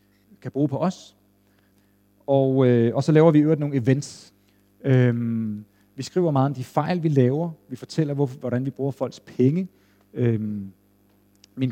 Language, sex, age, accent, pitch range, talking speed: Danish, male, 40-59, native, 105-150 Hz, 170 wpm